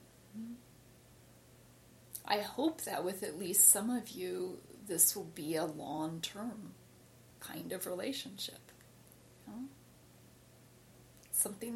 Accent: American